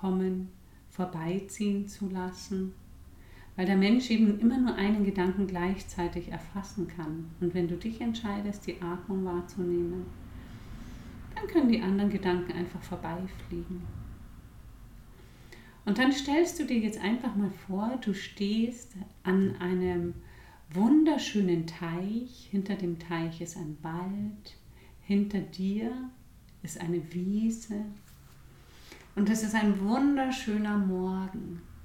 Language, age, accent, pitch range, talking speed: German, 50-69, German, 170-205 Hz, 115 wpm